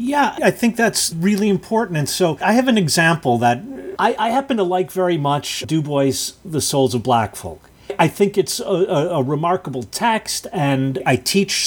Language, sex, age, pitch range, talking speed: English, male, 40-59, 140-190 Hz, 190 wpm